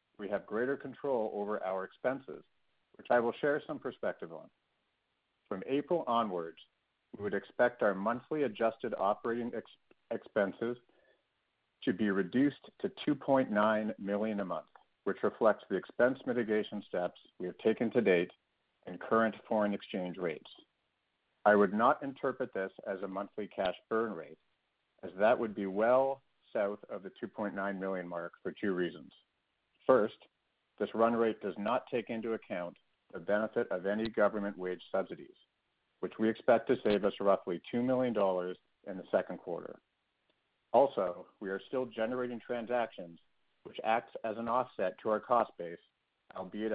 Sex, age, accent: male, 50-69, American